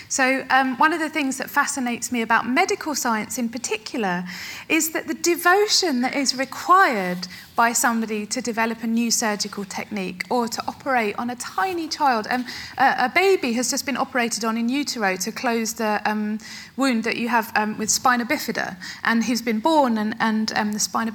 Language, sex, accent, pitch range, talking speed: English, female, British, 220-275 Hz, 195 wpm